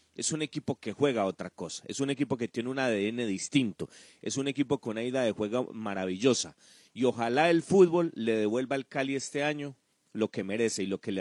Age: 40-59